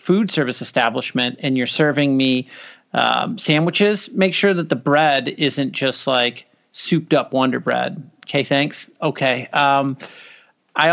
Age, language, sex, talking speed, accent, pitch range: 40-59, English, male, 145 wpm, American, 125-160 Hz